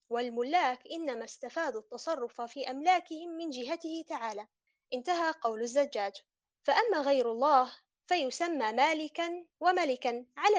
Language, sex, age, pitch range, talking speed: Arabic, female, 20-39, 240-325 Hz, 110 wpm